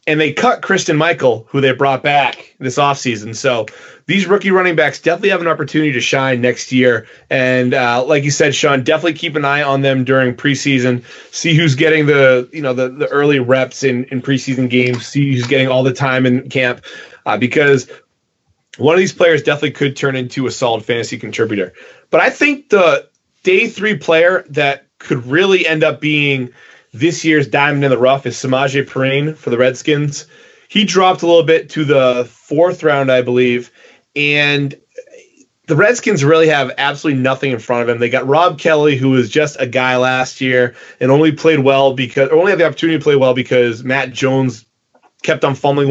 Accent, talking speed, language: American, 195 wpm, English